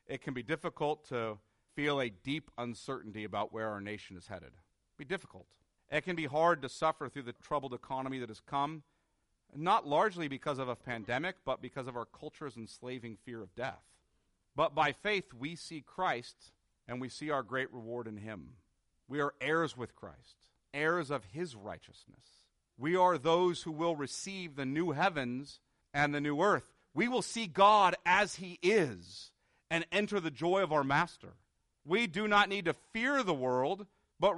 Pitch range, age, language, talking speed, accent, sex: 125-185 Hz, 40-59, English, 185 wpm, American, male